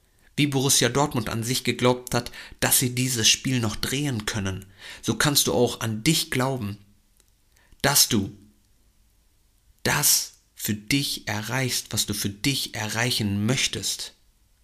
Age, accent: 50-69, German